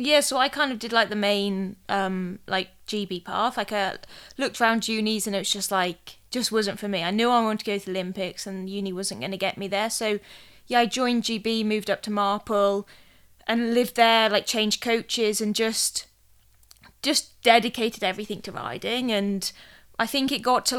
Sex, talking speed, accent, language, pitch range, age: female, 210 wpm, British, English, 190-225 Hz, 20-39